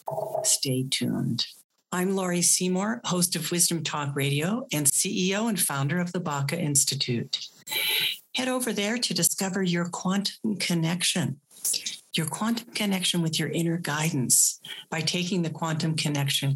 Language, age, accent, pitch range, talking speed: English, 60-79, American, 150-190 Hz, 140 wpm